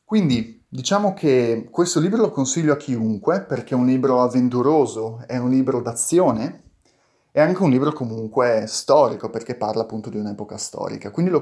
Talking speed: 170 wpm